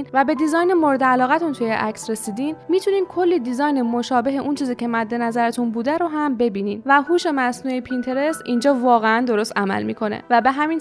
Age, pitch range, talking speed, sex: 10-29, 225-300 Hz, 185 wpm, female